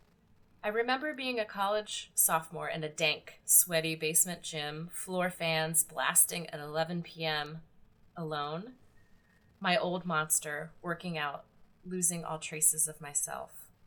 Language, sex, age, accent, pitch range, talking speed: English, female, 30-49, American, 160-200 Hz, 125 wpm